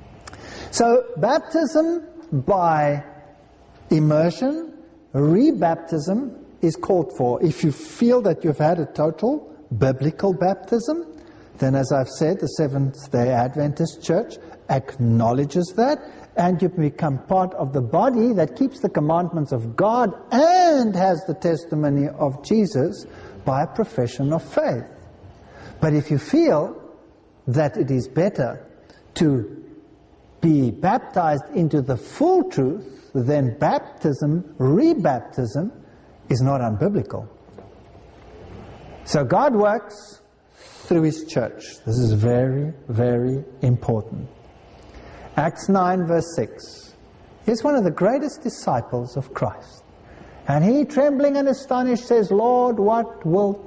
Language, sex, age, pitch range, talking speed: English, male, 50-69, 140-230 Hz, 120 wpm